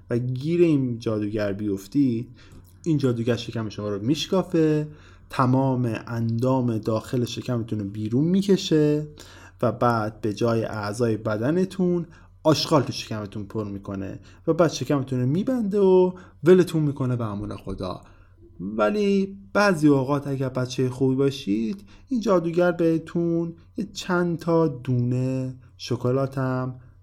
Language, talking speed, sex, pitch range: Persian, 120 wpm, male, 110-155 Hz